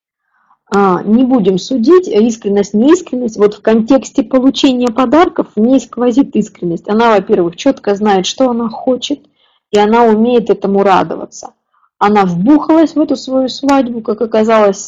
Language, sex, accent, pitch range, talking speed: Russian, female, native, 210-265 Hz, 135 wpm